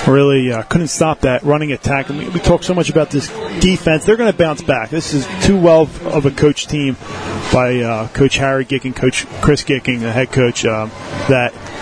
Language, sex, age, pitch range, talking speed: English, male, 30-49, 125-155 Hz, 220 wpm